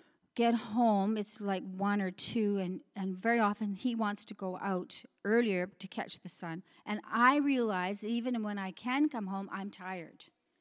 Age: 40-59